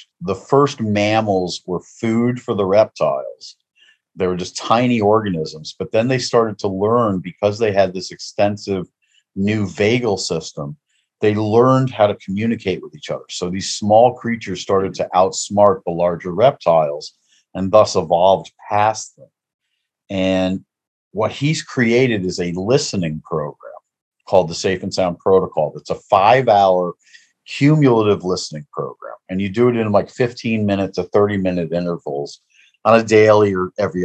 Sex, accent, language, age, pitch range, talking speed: male, American, English, 40-59, 90-110 Hz, 155 wpm